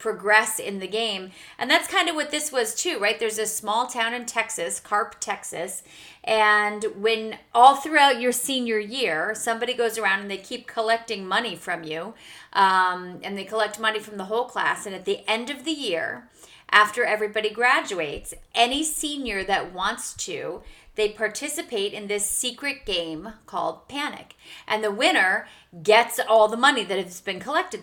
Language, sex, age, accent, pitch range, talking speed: English, female, 30-49, American, 210-270 Hz, 175 wpm